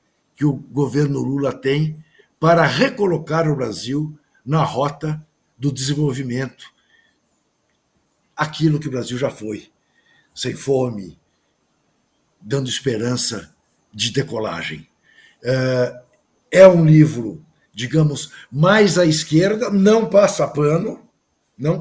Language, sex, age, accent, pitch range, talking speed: Portuguese, male, 60-79, Brazilian, 145-190 Hz, 100 wpm